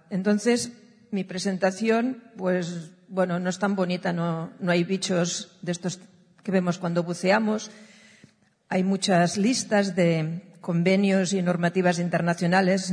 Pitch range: 175-205 Hz